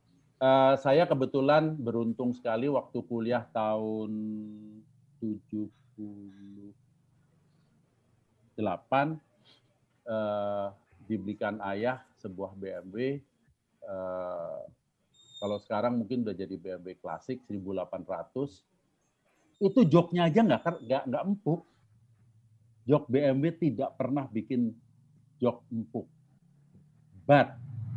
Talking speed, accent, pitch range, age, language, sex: 80 wpm, native, 110-155 Hz, 50-69, Indonesian, male